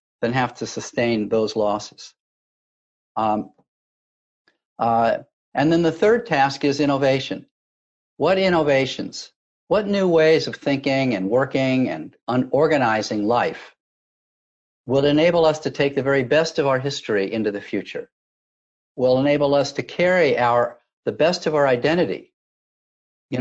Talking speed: 140 wpm